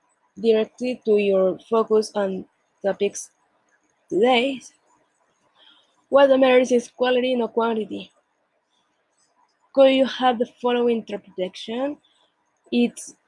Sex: female